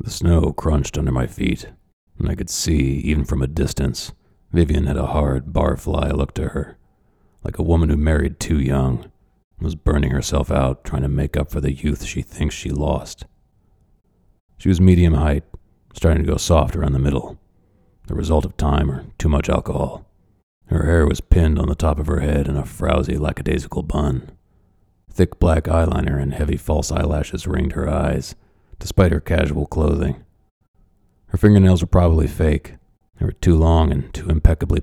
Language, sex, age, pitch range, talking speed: English, male, 40-59, 70-90 Hz, 180 wpm